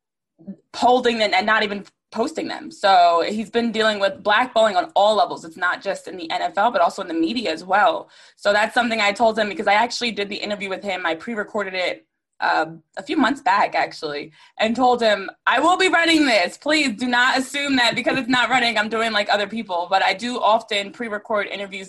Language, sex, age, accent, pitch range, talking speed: English, female, 20-39, American, 200-250 Hz, 220 wpm